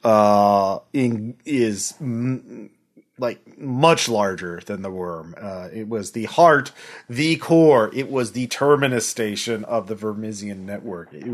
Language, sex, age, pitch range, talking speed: English, male, 30-49, 105-130 Hz, 145 wpm